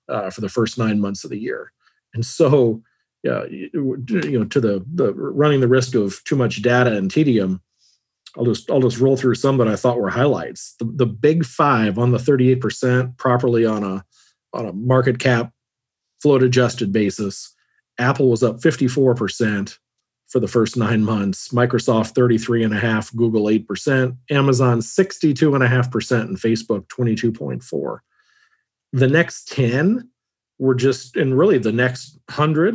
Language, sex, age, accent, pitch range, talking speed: English, male, 40-59, American, 115-135 Hz, 185 wpm